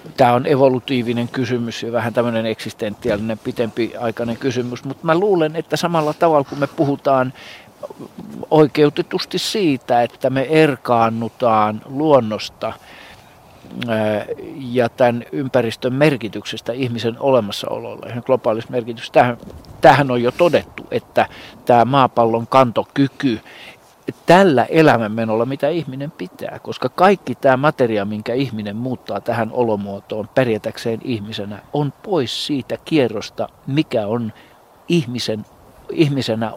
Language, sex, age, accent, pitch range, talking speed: Finnish, male, 50-69, native, 115-140 Hz, 110 wpm